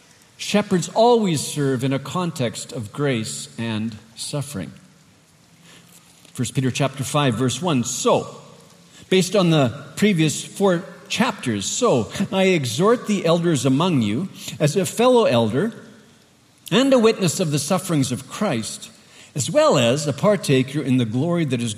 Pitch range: 130-195 Hz